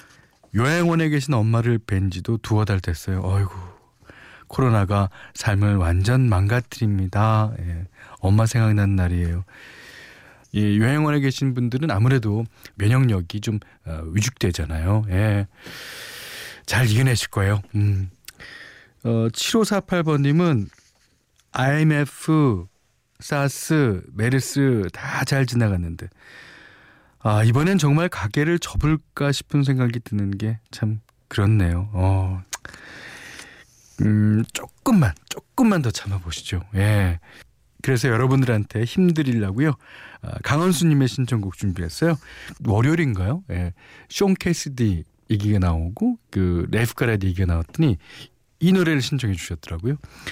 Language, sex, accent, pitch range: Korean, male, native, 95-135 Hz